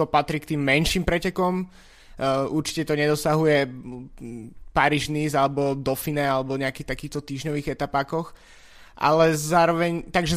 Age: 20-39